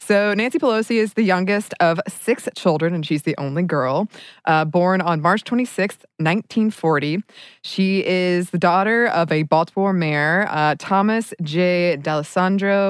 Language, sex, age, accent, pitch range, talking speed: English, female, 20-39, American, 160-205 Hz, 150 wpm